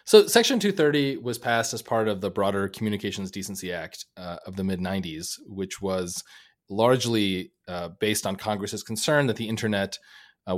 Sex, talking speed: male, 165 wpm